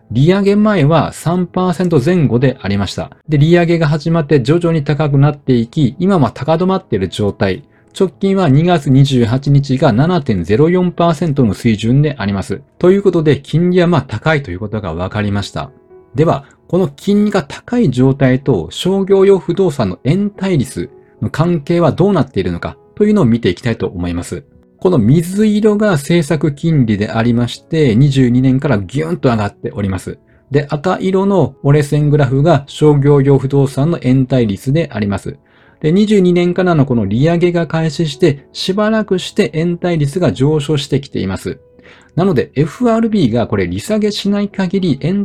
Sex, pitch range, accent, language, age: male, 120-175 Hz, native, Japanese, 40-59